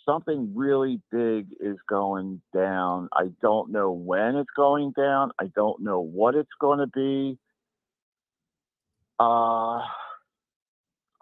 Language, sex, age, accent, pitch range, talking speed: English, male, 50-69, American, 95-130 Hz, 120 wpm